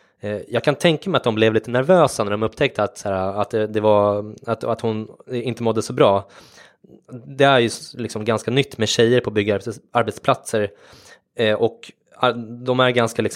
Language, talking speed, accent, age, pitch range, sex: English, 185 wpm, Swedish, 20-39, 105-130 Hz, male